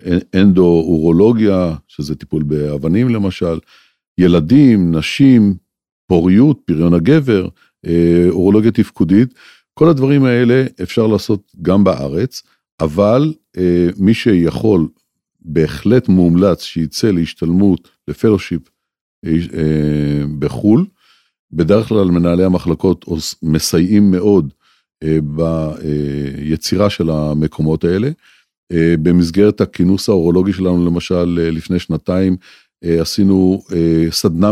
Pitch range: 80-100 Hz